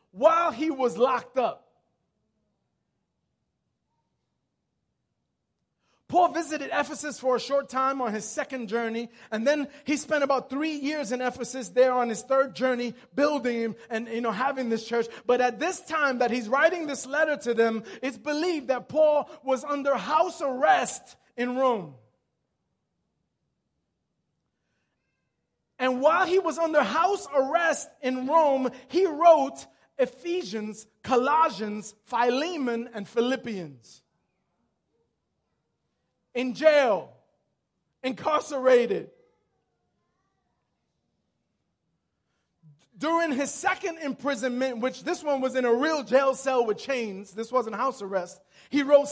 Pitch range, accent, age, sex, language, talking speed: 225-290 Hz, American, 30-49, male, English, 120 wpm